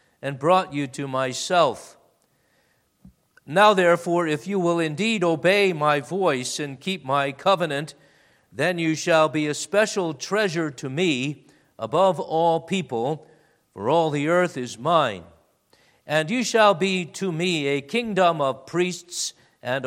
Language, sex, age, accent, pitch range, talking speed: English, male, 50-69, American, 145-180 Hz, 140 wpm